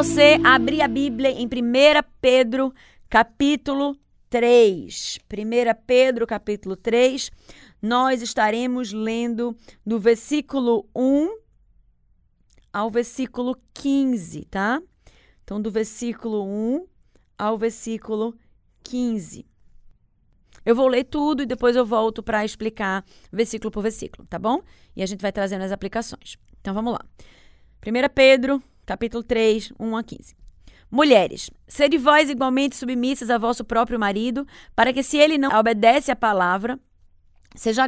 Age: 20-39